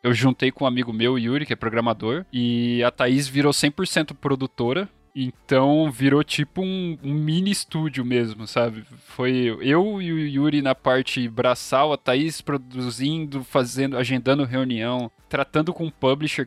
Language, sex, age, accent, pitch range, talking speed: Portuguese, male, 20-39, Brazilian, 120-155 Hz, 155 wpm